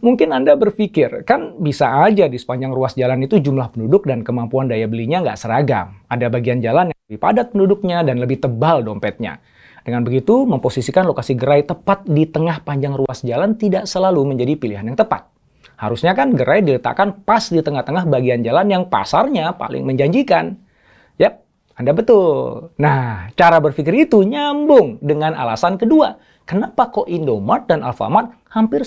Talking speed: 160 wpm